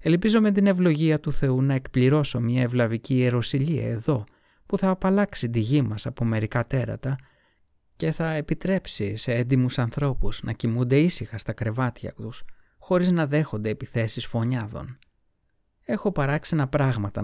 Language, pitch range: Greek, 110-150 Hz